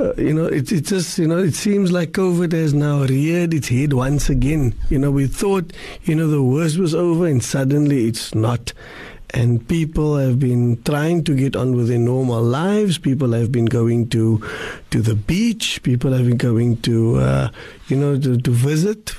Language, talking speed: English, 200 wpm